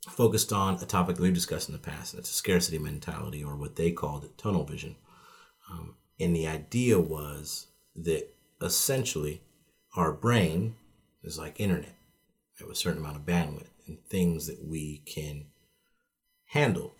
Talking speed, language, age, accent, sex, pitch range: 155 wpm, English, 40-59, American, male, 75-90 Hz